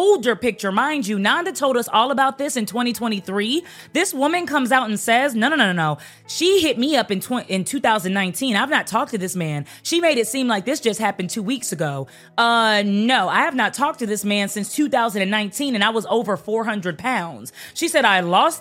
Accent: American